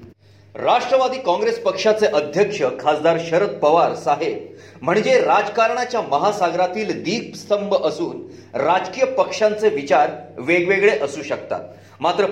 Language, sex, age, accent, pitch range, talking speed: Marathi, male, 40-59, native, 170-235 Hz, 70 wpm